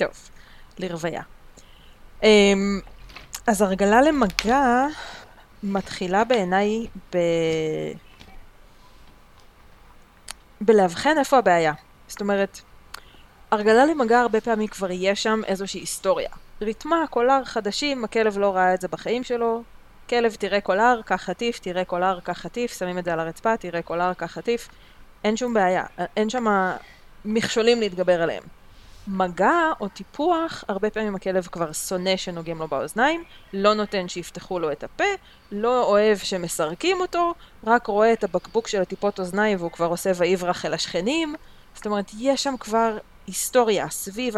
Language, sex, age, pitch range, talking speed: Hebrew, female, 20-39, 175-230 Hz, 135 wpm